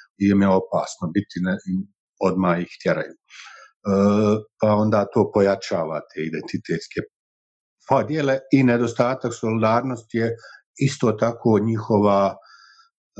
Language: Croatian